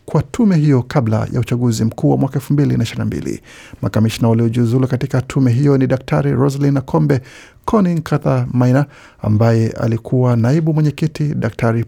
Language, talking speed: Swahili, 130 wpm